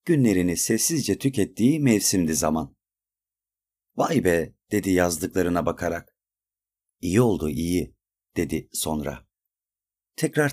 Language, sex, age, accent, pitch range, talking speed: Turkish, male, 40-59, native, 90-110 Hz, 90 wpm